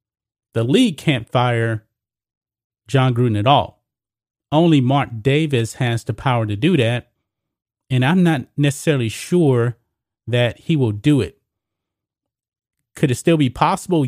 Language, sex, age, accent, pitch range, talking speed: English, male, 30-49, American, 115-150 Hz, 135 wpm